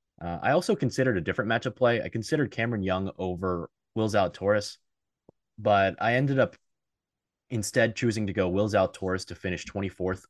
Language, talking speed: English, 175 wpm